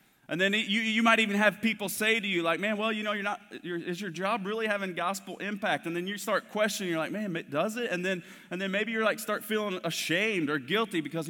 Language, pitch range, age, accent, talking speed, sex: English, 155-205 Hz, 30-49, American, 270 wpm, male